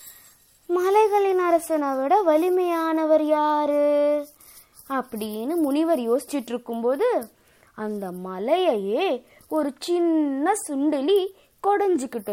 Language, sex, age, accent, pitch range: Tamil, female, 20-39, native, 280-360 Hz